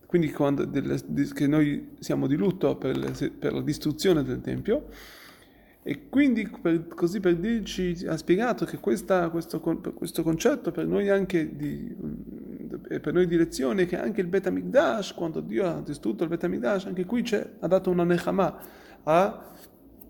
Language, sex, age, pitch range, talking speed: Italian, male, 30-49, 160-205 Hz, 170 wpm